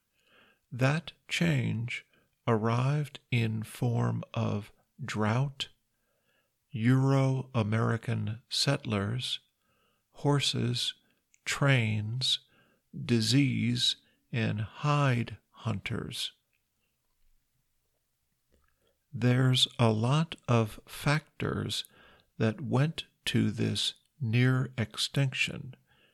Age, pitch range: 50-69, 110-135 Hz